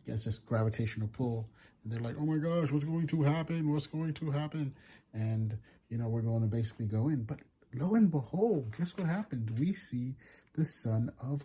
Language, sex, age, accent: English, male, 30-49, American